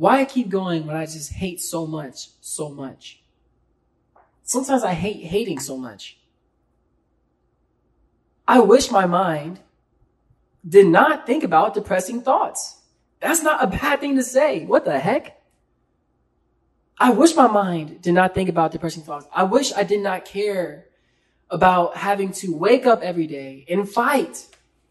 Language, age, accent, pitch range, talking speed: English, 20-39, American, 170-235 Hz, 150 wpm